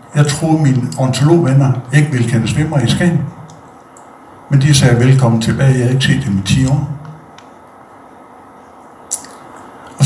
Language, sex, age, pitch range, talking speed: Danish, male, 60-79, 120-150 Hz, 145 wpm